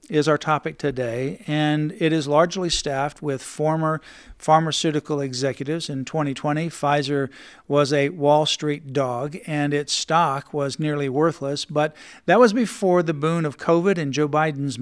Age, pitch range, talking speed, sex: 50-69, 140-160 Hz, 155 wpm, male